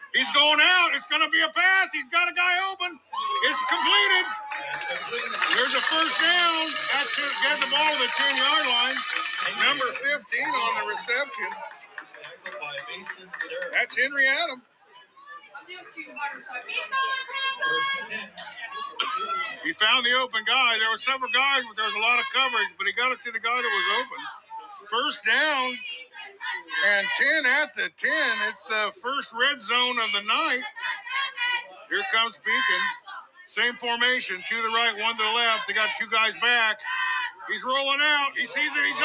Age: 50-69